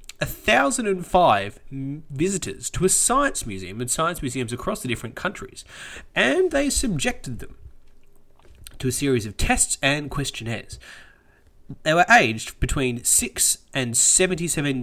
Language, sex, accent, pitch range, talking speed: English, male, Australian, 115-175 Hz, 140 wpm